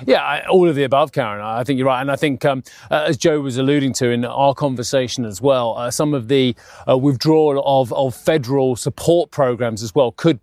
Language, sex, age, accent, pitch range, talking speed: English, male, 30-49, British, 130-155 Hz, 225 wpm